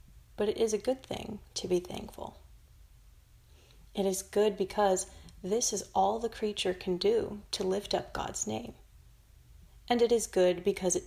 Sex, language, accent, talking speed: female, English, American, 170 wpm